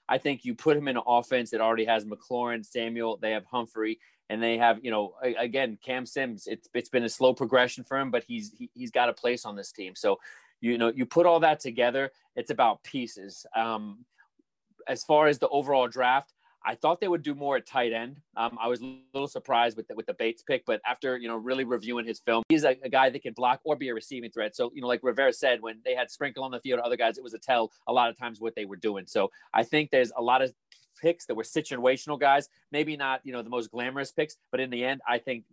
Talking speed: 260 wpm